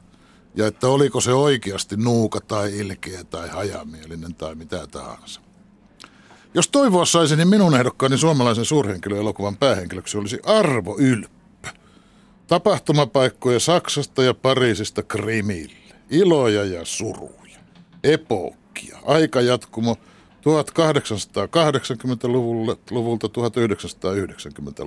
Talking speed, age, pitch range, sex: 90 wpm, 60-79, 105-150 Hz, male